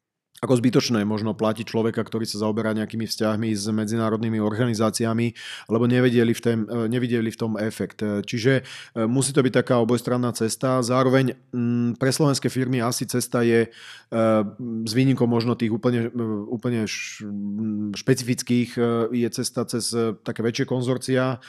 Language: Slovak